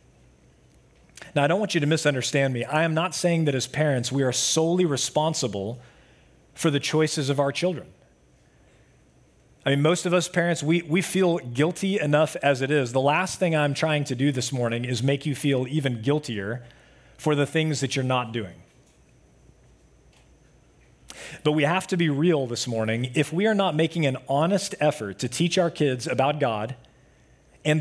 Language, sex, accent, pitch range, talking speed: English, male, American, 125-160 Hz, 180 wpm